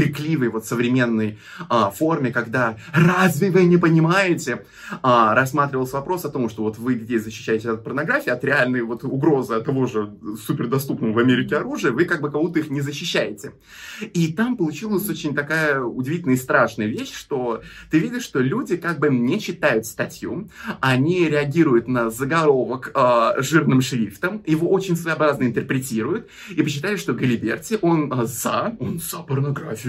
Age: 20-39